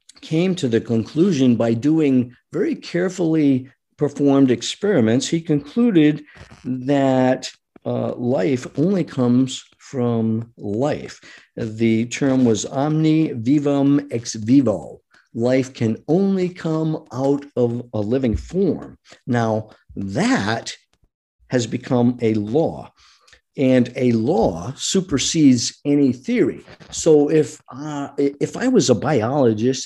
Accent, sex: American, male